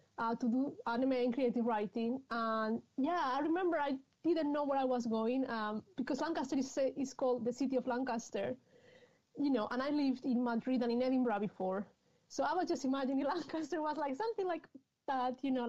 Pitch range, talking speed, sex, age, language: 230-285 Hz, 205 wpm, female, 30-49, English